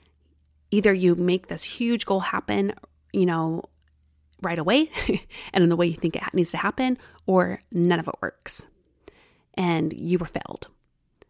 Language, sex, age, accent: English, female, 30-49, American